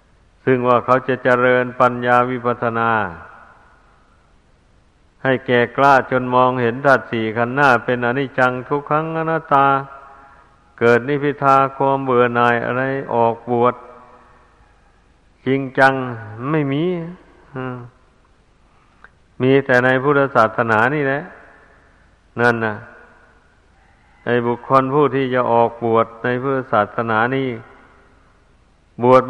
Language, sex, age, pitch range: Thai, male, 60-79, 115-130 Hz